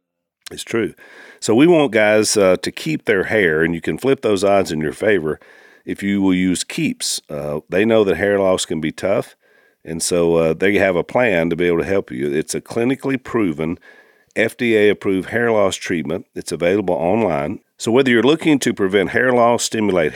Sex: male